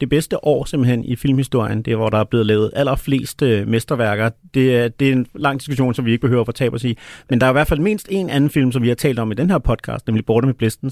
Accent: native